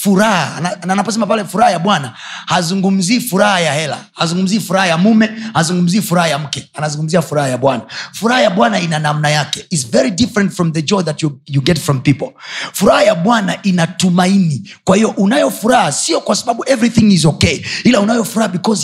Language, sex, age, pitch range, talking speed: Swahili, male, 30-49, 155-220 Hz, 185 wpm